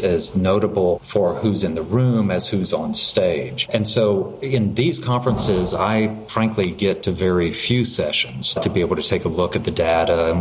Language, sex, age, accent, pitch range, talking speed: English, male, 30-49, American, 85-105 Hz, 195 wpm